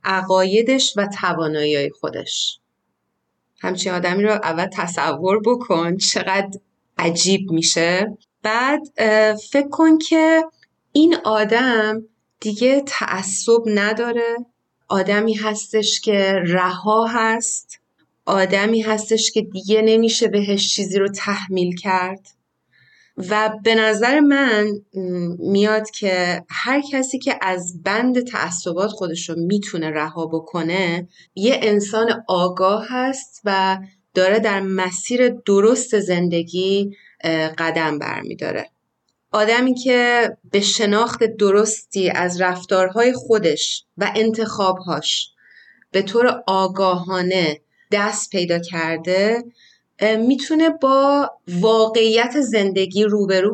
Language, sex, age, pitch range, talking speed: Persian, female, 30-49, 185-230 Hz, 100 wpm